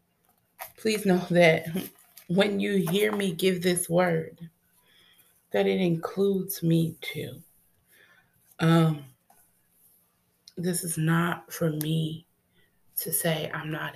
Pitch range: 155-180 Hz